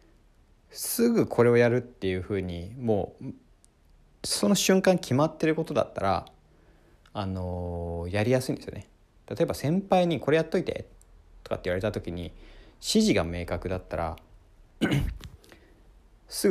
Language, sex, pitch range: Japanese, male, 90-130 Hz